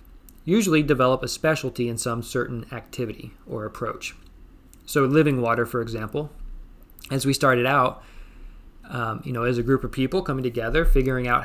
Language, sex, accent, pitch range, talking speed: English, male, American, 105-135 Hz, 160 wpm